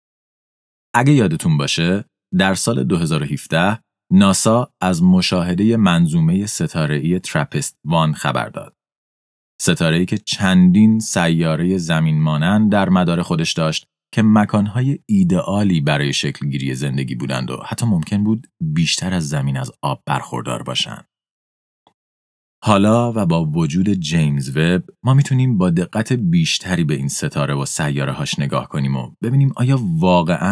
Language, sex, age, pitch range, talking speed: Persian, male, 30-49, 70-110 Hz, 135 wpm